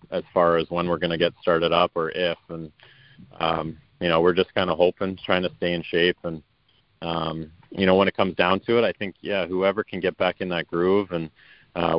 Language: English